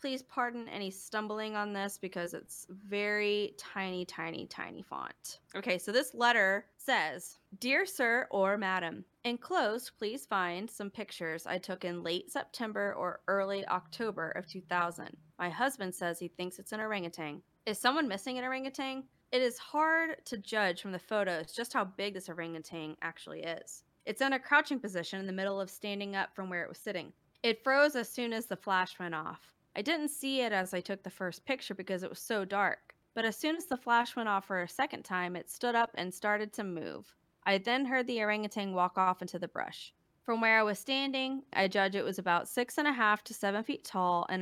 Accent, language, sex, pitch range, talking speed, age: American, English, female, 180-235 Hz, 205 wpm, 20-39